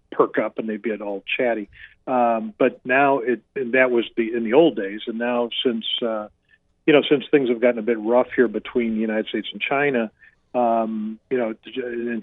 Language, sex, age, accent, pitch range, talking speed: English, male, 50-69, American, 110-130 Hz, 215 wpm